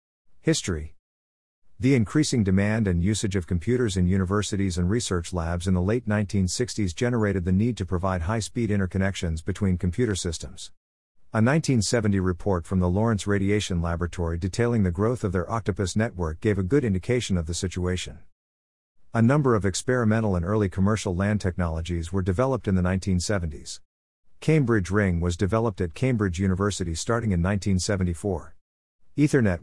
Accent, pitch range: American, 90-110 Hz